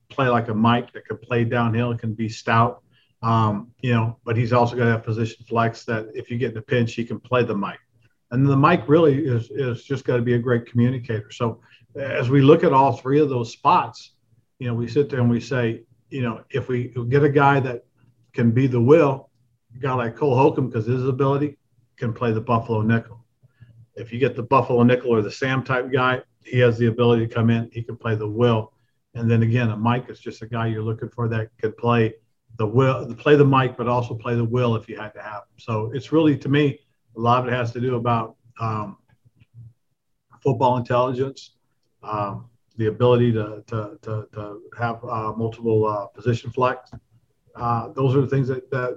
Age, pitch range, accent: 50-69, 115-130 Hz, American